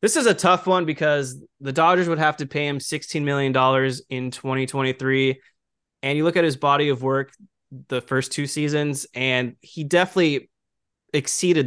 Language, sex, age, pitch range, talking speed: English, male, 20-39, 125-155 Hz, 170 wpm